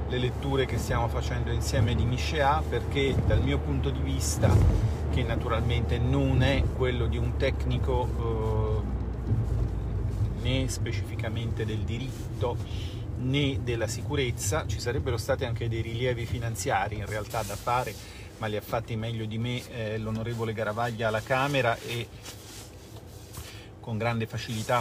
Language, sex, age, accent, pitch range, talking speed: Italian, male, 40-59, native, 100-120 Hz, 140 wpm